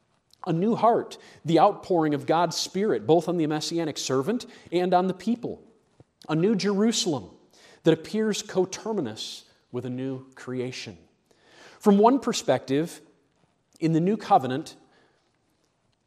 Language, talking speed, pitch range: English, 125 wpm, 130-185 Hz